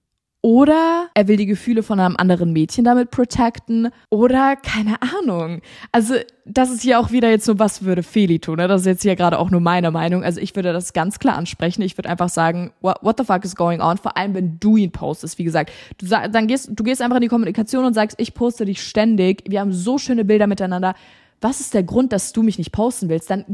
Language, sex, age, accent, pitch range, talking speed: German, female, 20-39, German, 180-240 Hz, 240 wpm